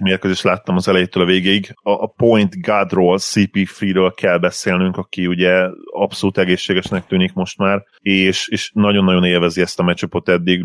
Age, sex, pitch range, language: 30-49, male, 90-105 Hz, Hungarian